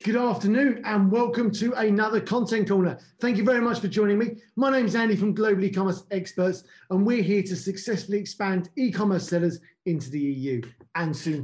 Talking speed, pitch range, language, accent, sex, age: 190 wpm, 180-225 Hz, English, British, male, 40-59